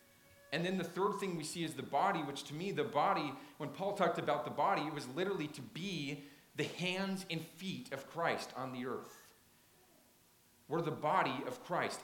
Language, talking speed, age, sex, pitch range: English, 200 wpm, 40-59, male, 110-150 Hz